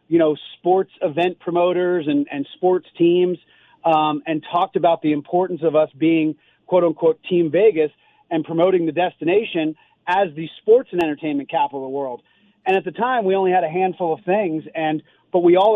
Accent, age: American, 40-59